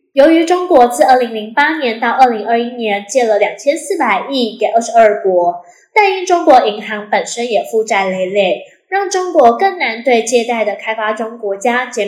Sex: female